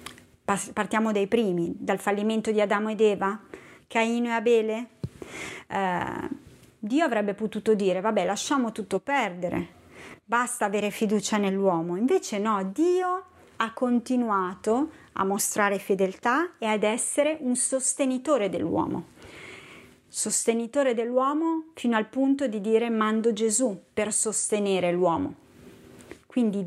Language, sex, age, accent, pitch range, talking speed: Italian, female, 30-49, native, 200-245 Hz, 115 wpm